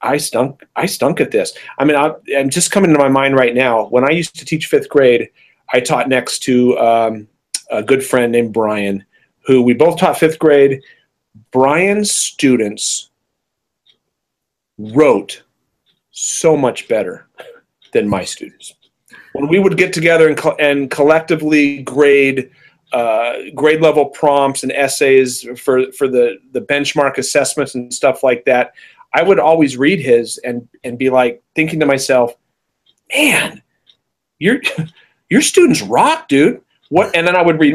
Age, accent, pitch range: 40-59, American, 130-175 Hz